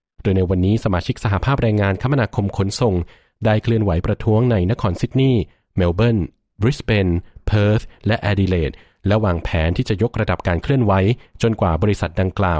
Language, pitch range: Thai, 90-110 Hz